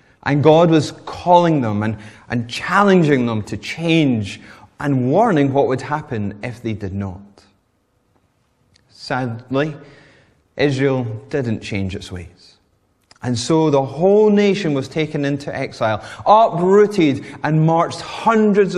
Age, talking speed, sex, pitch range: 30-49, 125 wpm, male, 115-165 Hz